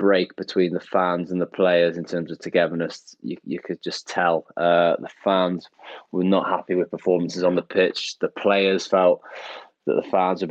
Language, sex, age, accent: English, male, 20-39, British